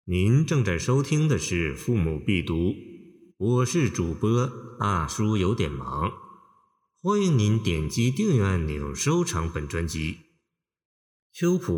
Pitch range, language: 85-140 Hz, Chinese